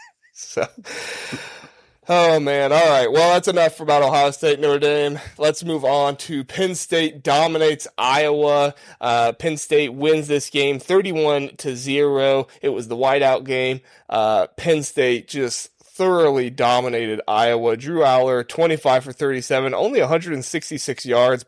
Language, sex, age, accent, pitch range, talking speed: English, male, 20-39, American, 130-170 Hz, 140 wpm